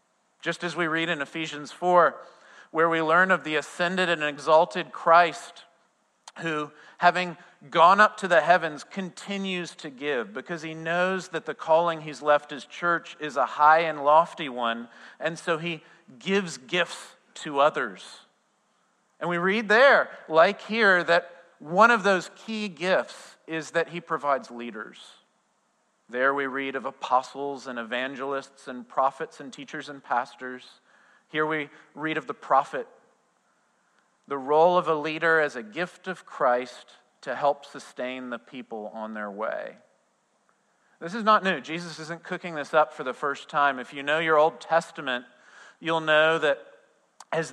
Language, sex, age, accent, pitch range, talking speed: English, male, 40-59, American, 140-175 Hz, 160 wpm